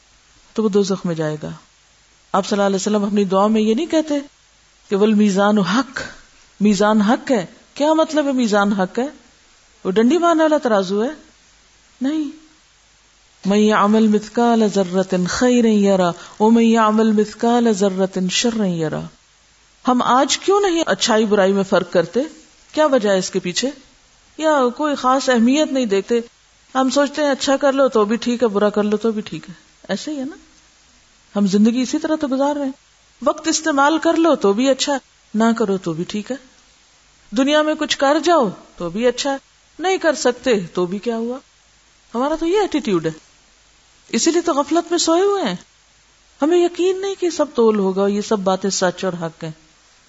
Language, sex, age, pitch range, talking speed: Urdu, female, 50-69, 195-280 Hz, 180 wpm